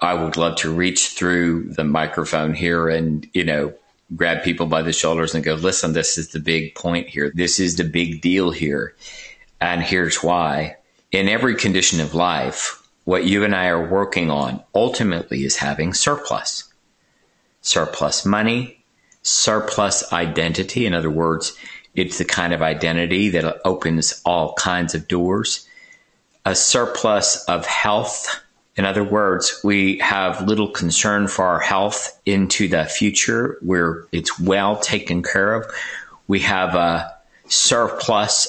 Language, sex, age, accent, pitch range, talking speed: English, male, 50-69, American, 85-105 Hz, 150 wpm